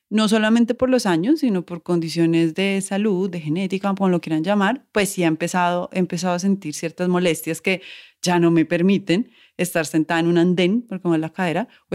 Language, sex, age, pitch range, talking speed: Spanish, female, 30-49, 175-220 Hz, 215 wpm